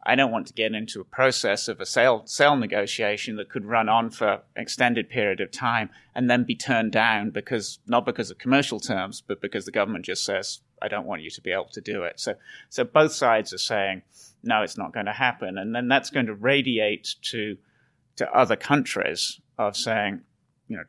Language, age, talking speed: English, 30-49, 220 wpm